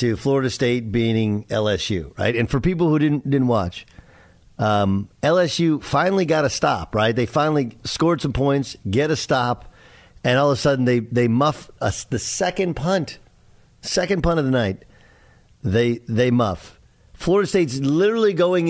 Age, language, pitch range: 50-69, English, 110-160 Hz